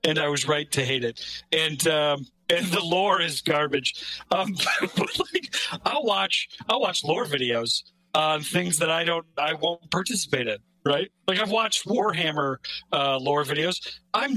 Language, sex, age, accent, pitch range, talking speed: English, male, 50-69, American, 145-190 Hz, 165 wpm